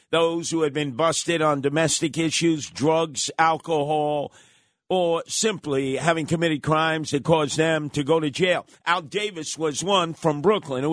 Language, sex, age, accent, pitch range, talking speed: English, male, 50-69, American, 150-185 Hz, 160 wpm